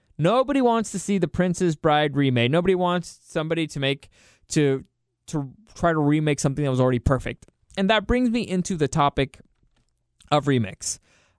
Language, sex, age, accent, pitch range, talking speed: English, male, 20-39, American, 135-185 Hz, 170 wpm